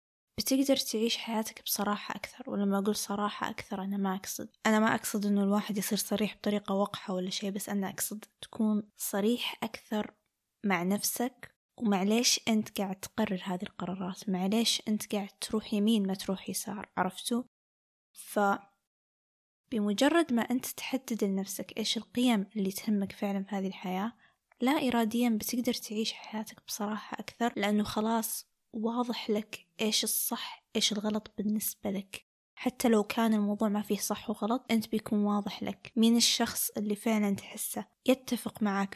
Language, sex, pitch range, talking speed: Arabic, female, 200-230 Hz, 145 wpm